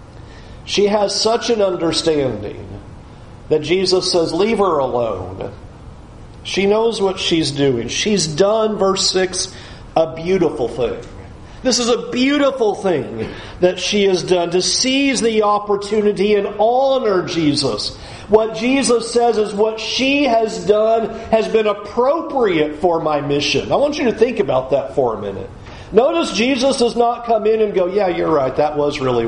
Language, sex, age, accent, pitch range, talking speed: English, male, 50-69, American, 135-220 Hz, 160 wpm